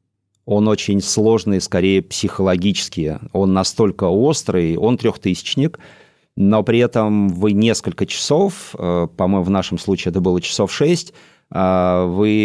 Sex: male